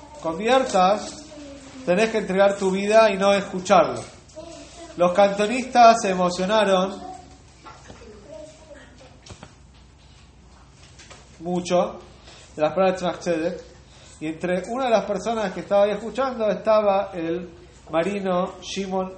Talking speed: 105 wpm